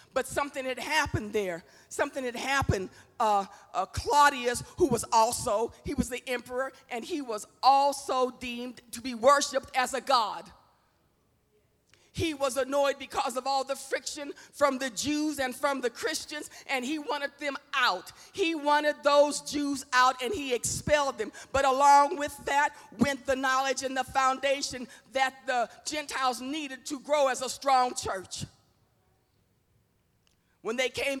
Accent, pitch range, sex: American, 250-280 Hz, female